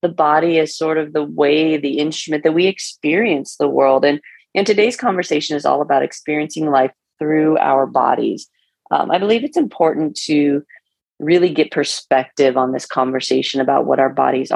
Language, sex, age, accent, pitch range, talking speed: English, female, 30-49, American, 135-160 Hz, 175 wpm